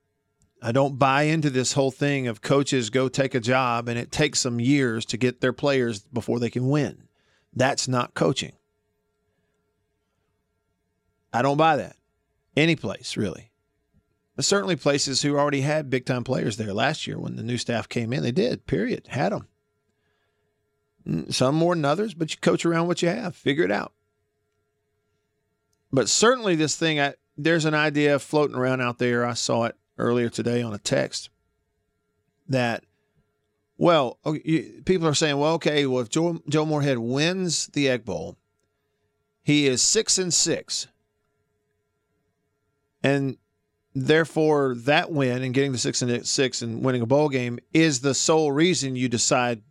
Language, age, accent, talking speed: English, 40-59, American, 160 wpm